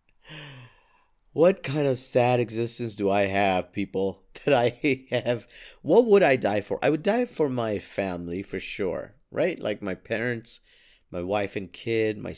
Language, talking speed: English, 165 wpm